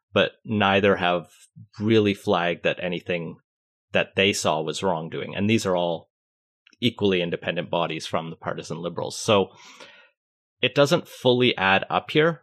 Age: 30-49